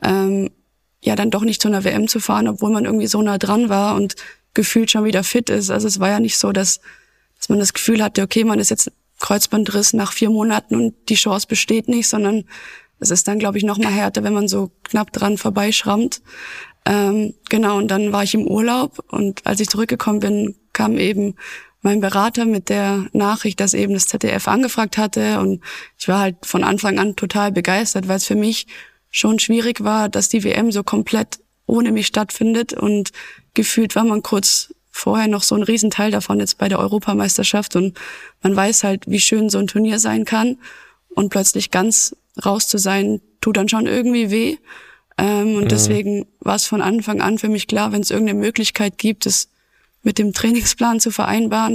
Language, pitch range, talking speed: German, 200-225 Hz, 200 wpm